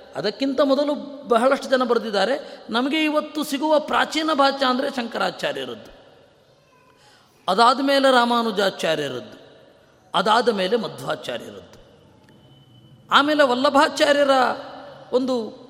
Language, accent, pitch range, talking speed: Kannada, native, 235-280 Hz, 80 wpm